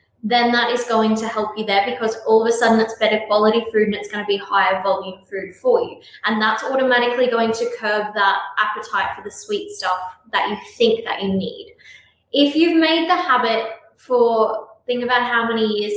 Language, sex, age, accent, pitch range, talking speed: English, female, 10-29, Australian, 215-255 Hz, 210 wpm